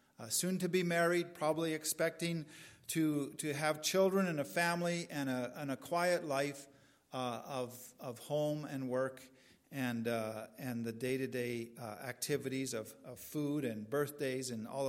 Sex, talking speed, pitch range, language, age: male, 160 wpm, 125-170 Hz, English, 50-69